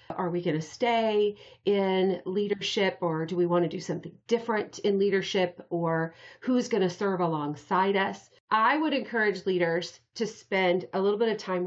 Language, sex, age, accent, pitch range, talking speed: English, female, 40-59, American, 175-220 Hz, 165 wpm